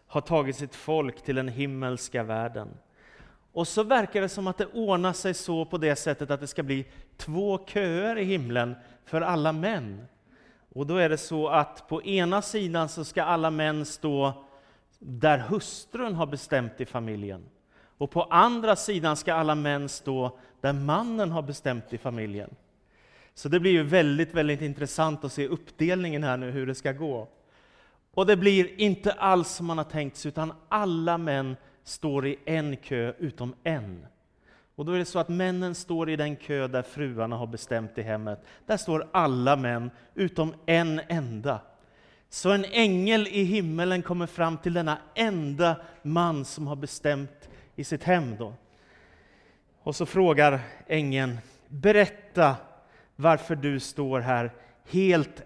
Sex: male